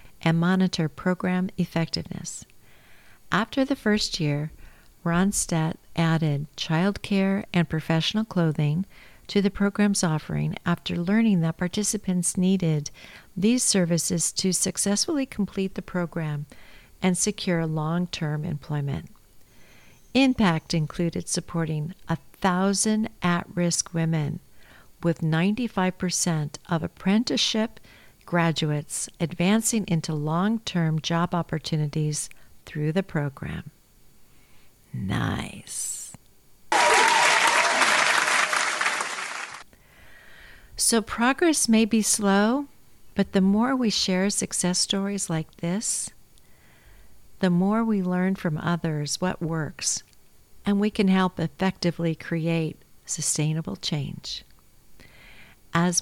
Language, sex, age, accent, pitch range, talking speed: English, female, 50-69, American, 160-200 Hz, 90 wpm